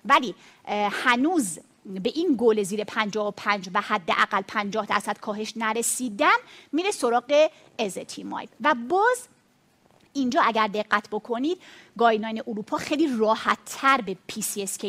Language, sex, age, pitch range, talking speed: Persian, female, 30-49, 225-300 Hz, 115 wpm